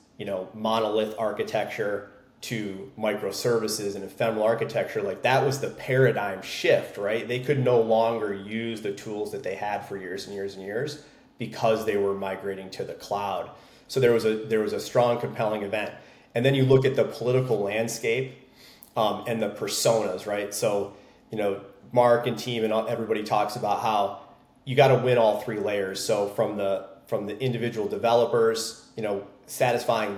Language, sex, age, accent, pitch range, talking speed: English, male, 30-49, American, 105-120 Hz, 180 wpm